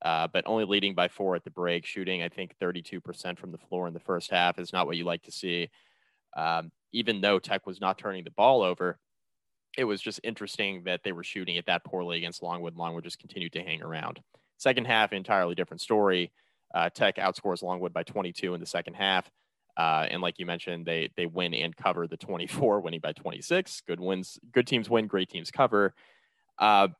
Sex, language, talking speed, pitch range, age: male, English, 210 wpm, 85-95 Hz, 30-49